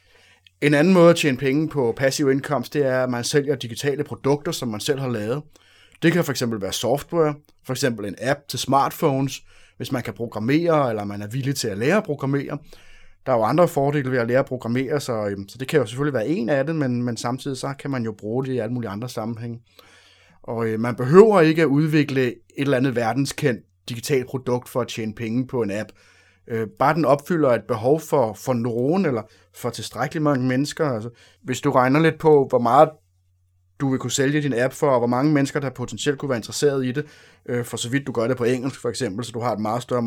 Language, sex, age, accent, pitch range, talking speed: Danish, male, 30-49, native, 115-150 Hz, 225 wpm